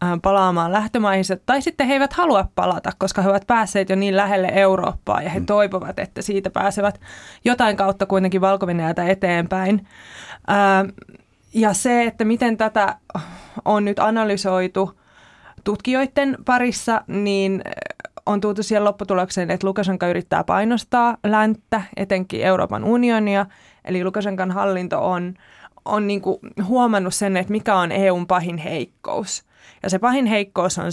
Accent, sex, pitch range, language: native, female, 185-210 Hz, Finnish